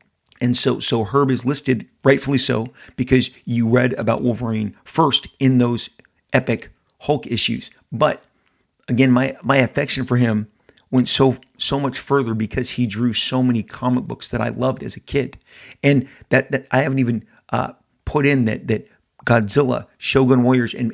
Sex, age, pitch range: male, 50-69, 115-130 Hz